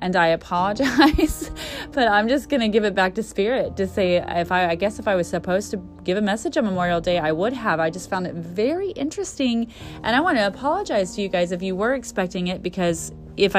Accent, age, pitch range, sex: American, 30-49, 180-245 Hz, female